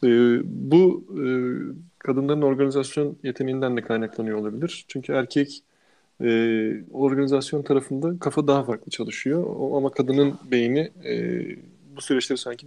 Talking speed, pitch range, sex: 100 wpm, 130-170 Hz, male